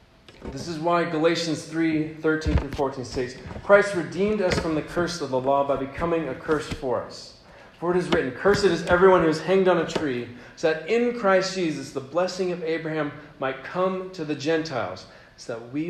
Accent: American